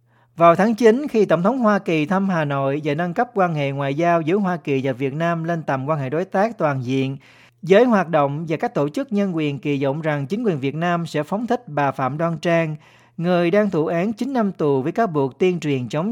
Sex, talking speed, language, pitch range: male, 255 wpm, Vietnamese, 140-190 Hz